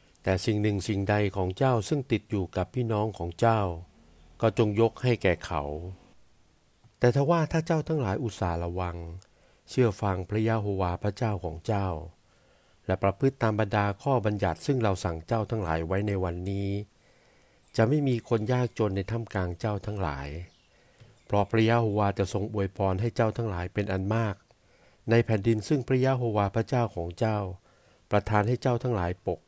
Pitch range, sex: 95-115 Hz, male